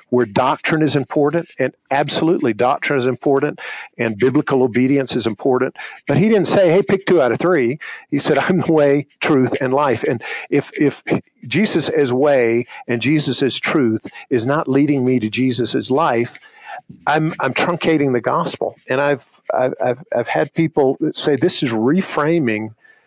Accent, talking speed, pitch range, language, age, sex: American, 170 wpm, 125-160 Hz, English, 50-69, male